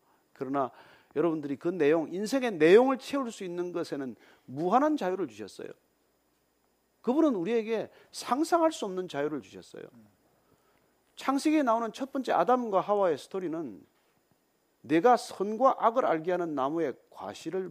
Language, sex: Korean, male